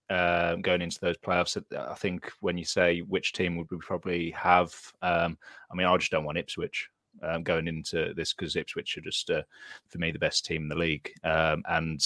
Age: 30-49